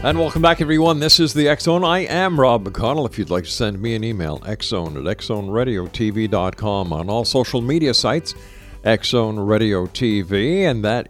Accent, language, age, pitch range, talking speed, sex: American, English, 50-69, 95-130 Hz, 180 wpm, male